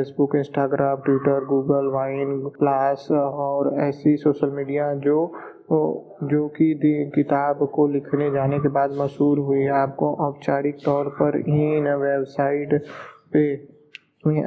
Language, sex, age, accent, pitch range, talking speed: Hindi, male, 20-39, native, 140-150 Hz, 130 wpm